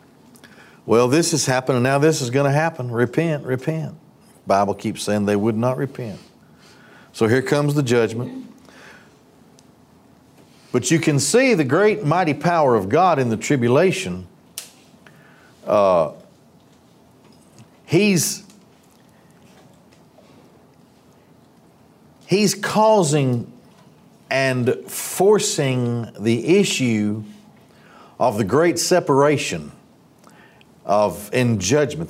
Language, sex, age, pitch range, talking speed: English, male, 50-69, 115-155 Hz, 100 wpm